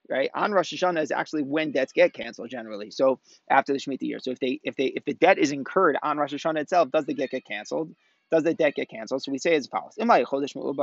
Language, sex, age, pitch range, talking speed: English, male, 20-39, 135-155 Hz, 250 wpm